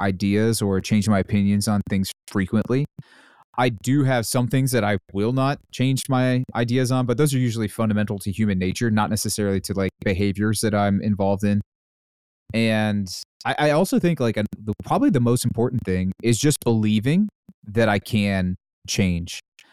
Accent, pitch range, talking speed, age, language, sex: American, 100-115 Hz, 175 wpm, 30-49, English, male